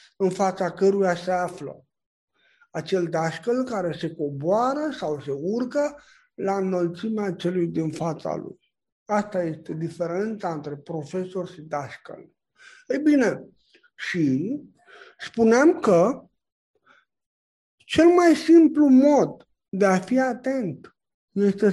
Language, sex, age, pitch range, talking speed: Romanian, male, 60-79, 185-260 Hz, 110 wpm